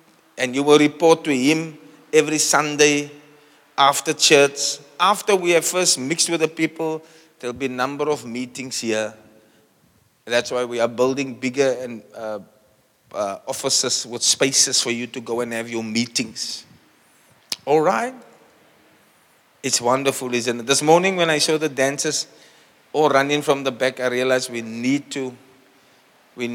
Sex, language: male, English